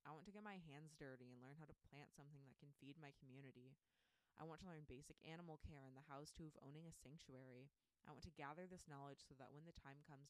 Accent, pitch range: American, 130-155 Hz